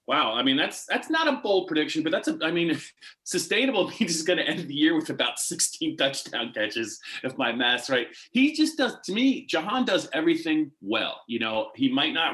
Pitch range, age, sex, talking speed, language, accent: 120-200 Hz, 30-49, male, 220 wpm, English, American